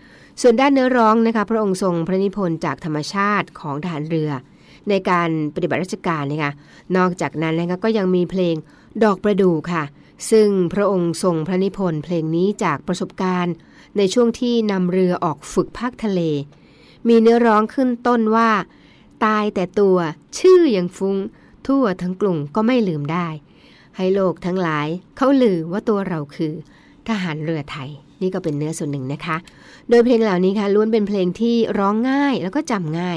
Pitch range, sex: 160-205 Hz, female